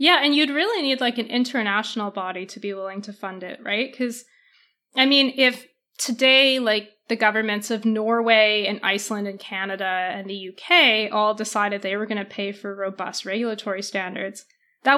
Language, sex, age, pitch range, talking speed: English, female, 20-39, 205-260 Hz, 180 wpm